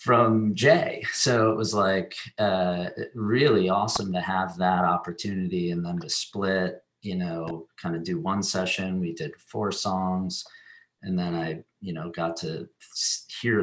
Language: English